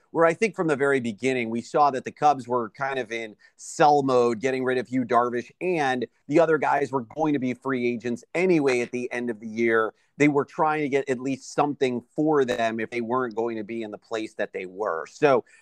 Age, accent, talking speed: 30-49, American, 240 wpm